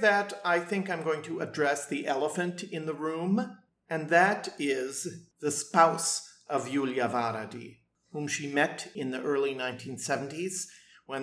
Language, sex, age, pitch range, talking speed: English, male, 50-69, 125-160 Hz, 150 wpm